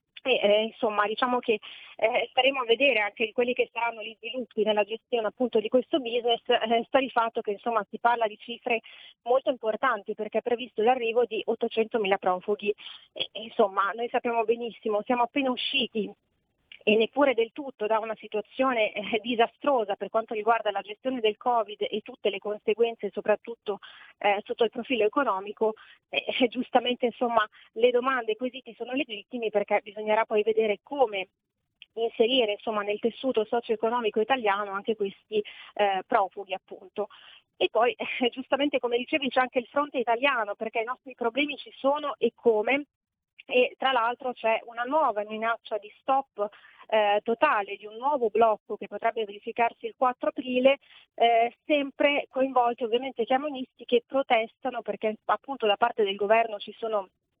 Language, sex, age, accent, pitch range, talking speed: Italian, female, 30-49, native, 215-255 Hz, 165 wpm